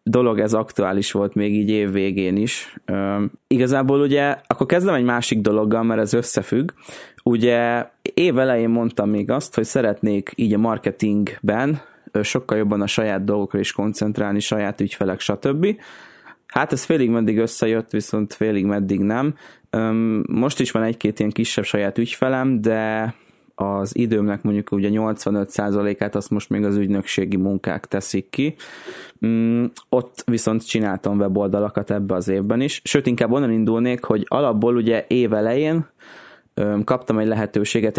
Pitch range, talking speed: 105-120 Hz, 140 wpm